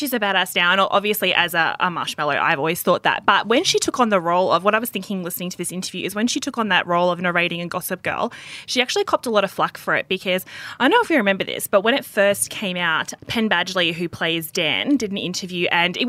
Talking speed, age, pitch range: 275 wpm, 20-39, 170-205 Hz